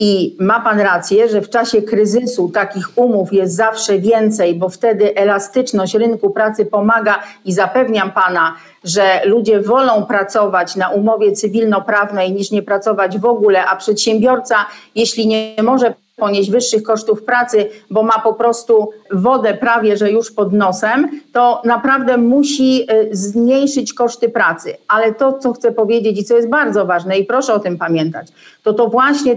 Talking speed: 155 wpm